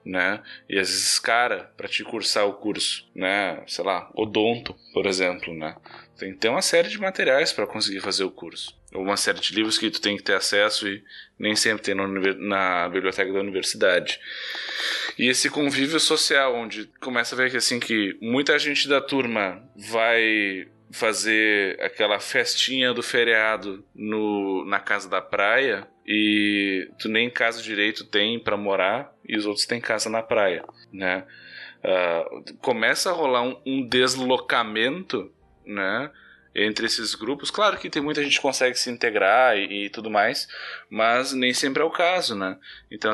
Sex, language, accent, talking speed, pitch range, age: male, Portuguese, Brazilian, 165 wpm, 105-130 Hz, 10-29